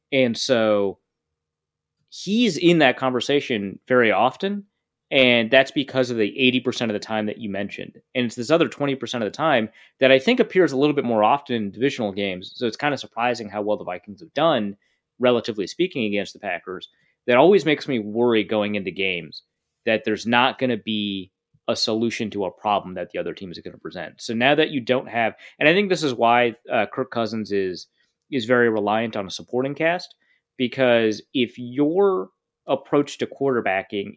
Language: English